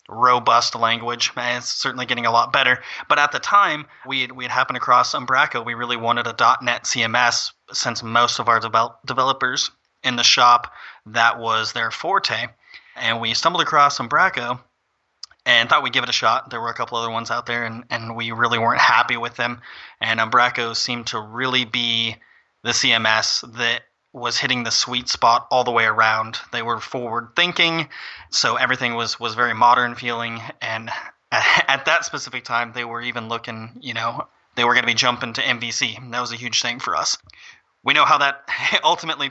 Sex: male